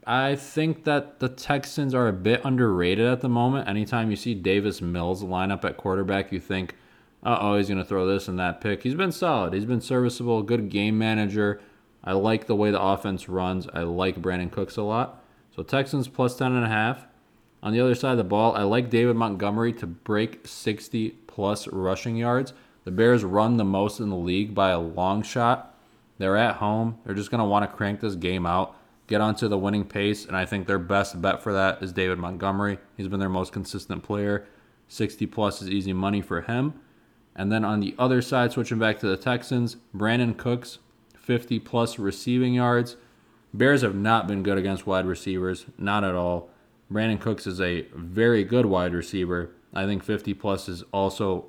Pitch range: 95-120 Hz